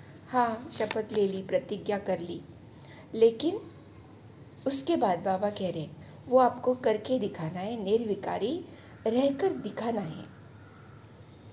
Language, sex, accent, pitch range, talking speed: Hindi, female, native, 150-235 Hz, 115 wpm